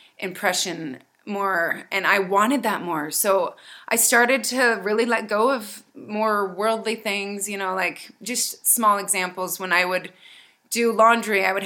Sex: female